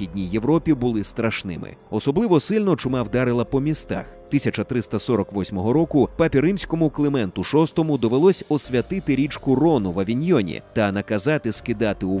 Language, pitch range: Ukrainian, 110-155 Hz